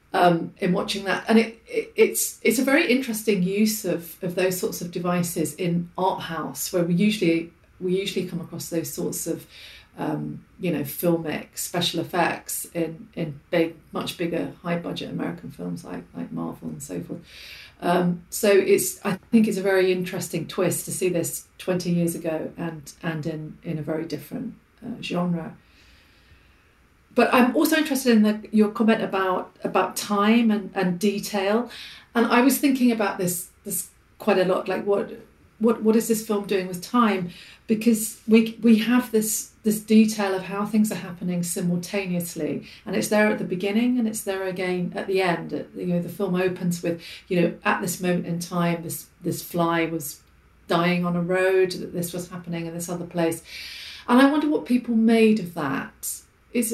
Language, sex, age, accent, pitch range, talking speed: English, female, 40-59, British, 170-215 Hz, 185 wpm